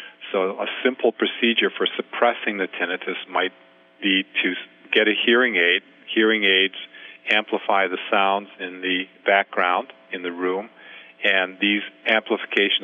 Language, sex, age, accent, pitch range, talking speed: English, male, 50-69, American, 90-105 Hz, 135 wpm